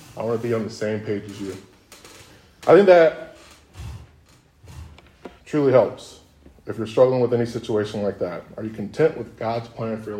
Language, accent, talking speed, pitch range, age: English, American, 180 wpm, 100-150 Hz, 20-39